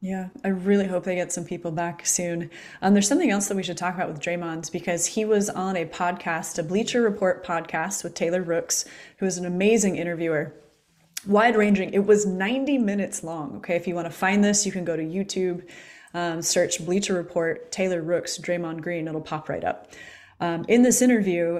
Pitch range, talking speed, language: 170-195 Hz, 205 wpm, English